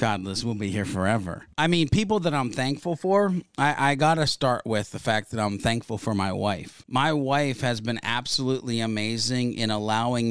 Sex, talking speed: male, 190 wpm